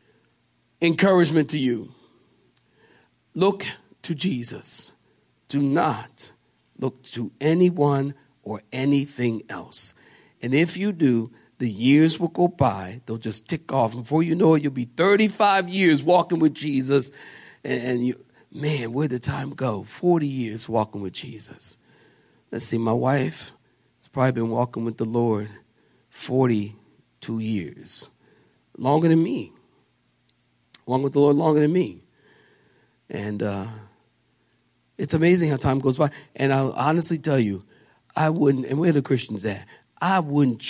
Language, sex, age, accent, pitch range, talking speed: English, male, 50-69, American, 115-170 Hz, 140 wpm